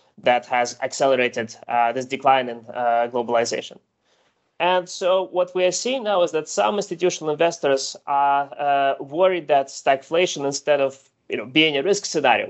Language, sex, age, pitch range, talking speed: English, male, 20-39, 125-160 Hz, 165 wpm